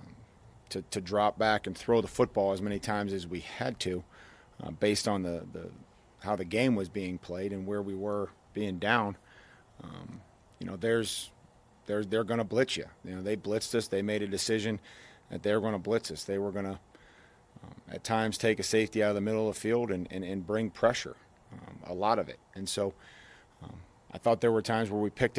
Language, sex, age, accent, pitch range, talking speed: English, male, 40-59, American, 100-110 Hz, 225 wpm